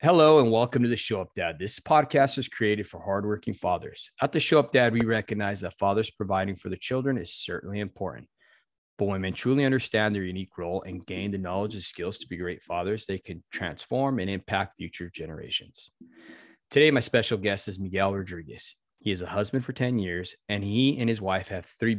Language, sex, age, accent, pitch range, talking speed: English, male, 30-49, American, 95-130 Hz, 210 wpm